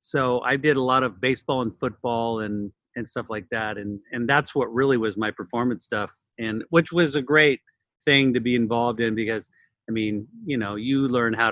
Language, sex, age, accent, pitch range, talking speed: English, male, 40-59, American, 120-150 Hz, 215 wpm